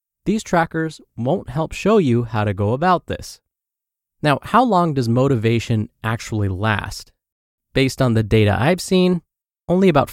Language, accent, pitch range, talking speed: English, American, 110-160 Hz, 155 wpm